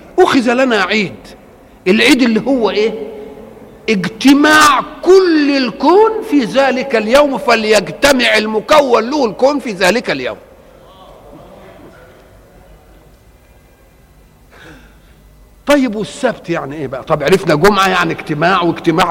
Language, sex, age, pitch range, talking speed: Arabic, male, 50-69, 180-255 Hz, 95 wpm